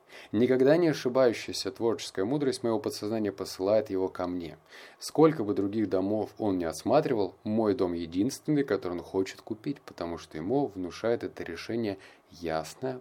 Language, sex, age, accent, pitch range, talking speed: Russian, male, 20-39, native, 90-125 Hz, 150 wpm